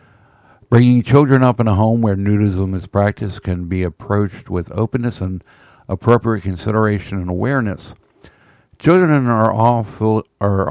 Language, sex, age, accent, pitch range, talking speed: English, male, 60-79, American, 95-115 Hz, 135 wpm